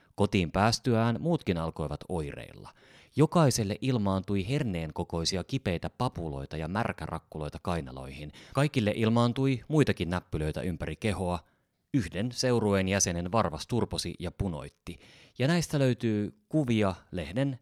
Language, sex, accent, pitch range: Finnish, male, native, 85-120 Hz